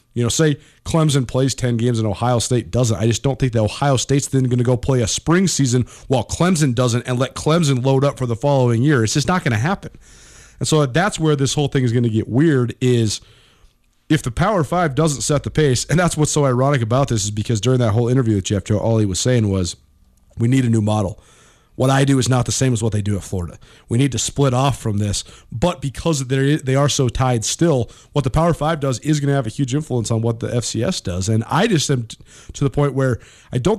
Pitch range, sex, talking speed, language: 115-145 Hz, male, 250 wpm, English